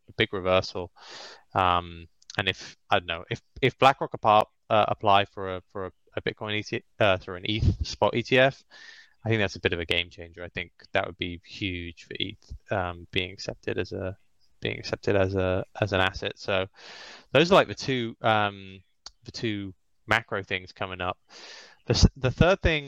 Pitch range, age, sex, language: 90-110 Hz, 20-39, male, English